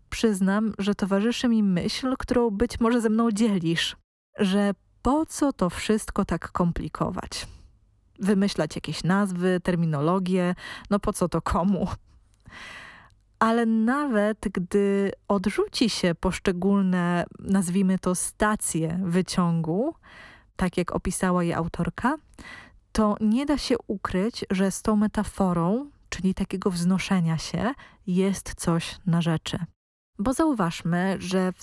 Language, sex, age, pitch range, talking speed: Polish, female, 20-39, 180-215 Hz, 120 wpm